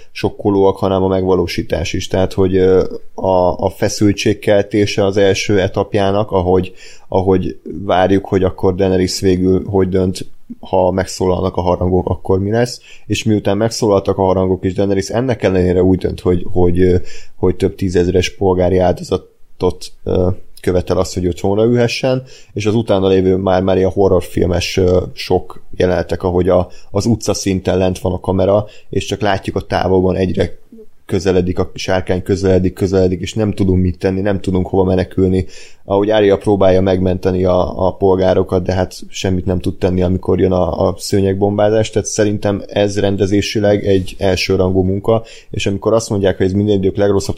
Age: 30-49